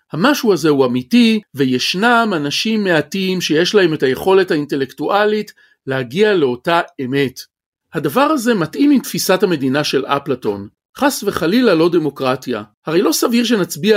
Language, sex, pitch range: Hebrew, male, 135-215 Hz